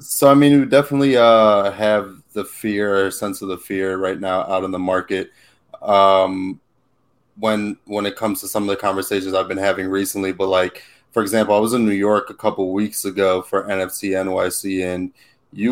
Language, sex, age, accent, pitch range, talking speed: English, male, 20-39, American, 95-105 Hz, 195 wpm